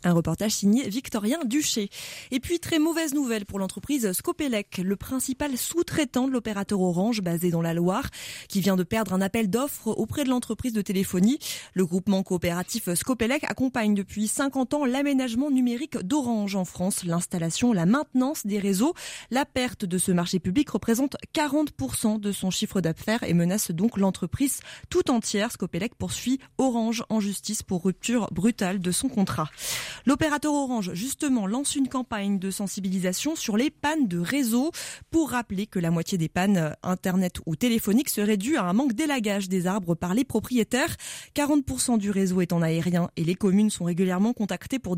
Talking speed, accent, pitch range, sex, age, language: 170 wpm, French, 190-260 Hz, female, 20-39, French